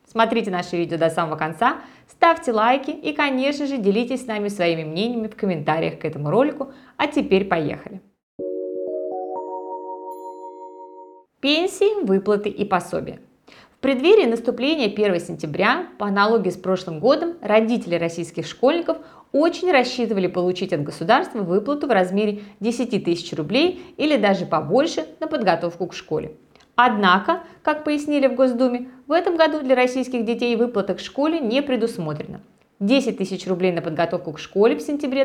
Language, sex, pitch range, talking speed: Russian, female, 180-265 Hz, 145 wpm